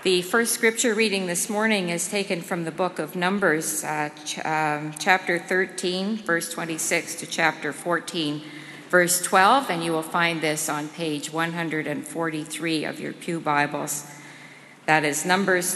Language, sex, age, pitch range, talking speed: English, female, 50-69, 155-190 Hz, 150 wpm